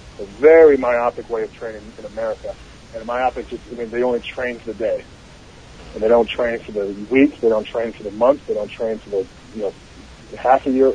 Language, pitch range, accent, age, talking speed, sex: English, 110-140 Hz, American, 40-59, 225 wpm, male